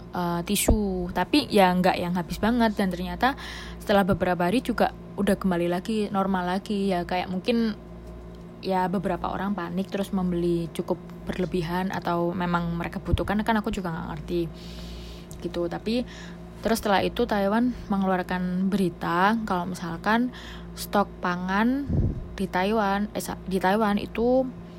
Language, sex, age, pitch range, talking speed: Indonesian, female, 20-39, 175-205 Hz, 140 wpm